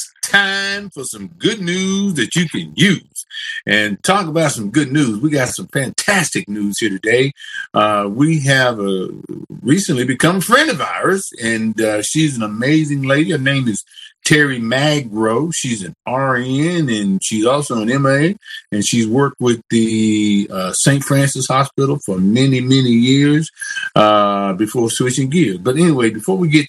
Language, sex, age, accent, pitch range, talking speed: English, male, 50-69, American, 110-155 Hz, 165 wpm